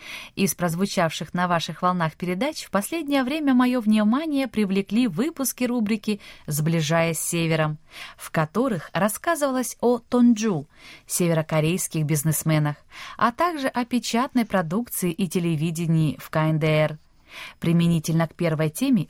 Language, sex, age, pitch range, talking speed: Russian, female, 20-39, 165-240 Hz, 115 wpm